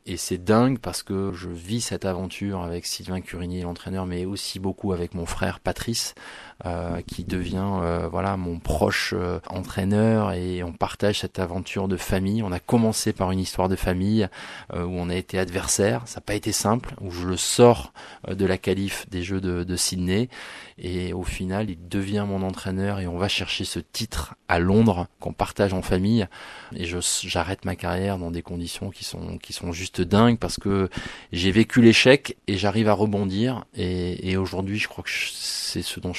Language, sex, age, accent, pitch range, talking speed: French, male, 20-39, French, 90-105 Hz, 195 wpm